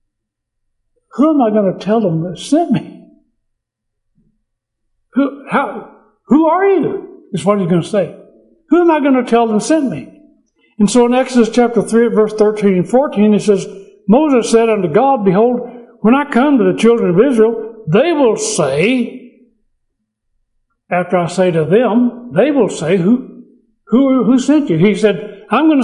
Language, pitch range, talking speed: English, 195-255 Hz, 175 wpm